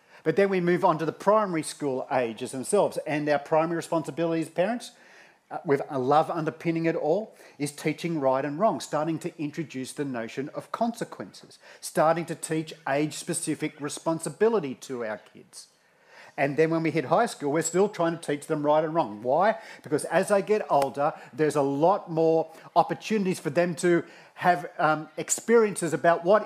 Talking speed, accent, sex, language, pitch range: 175 wpm, Australian, male, English, 145-175 Hz